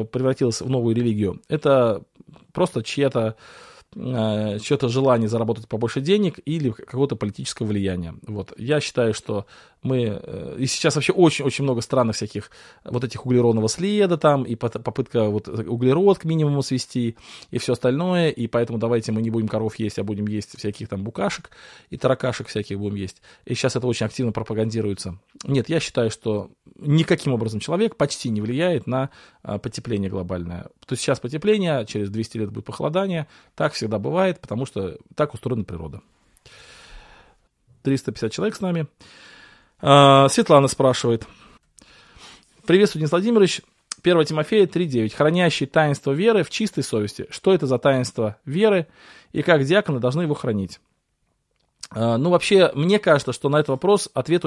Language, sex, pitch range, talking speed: Russian, male, 115-160 Hz, 150 wpm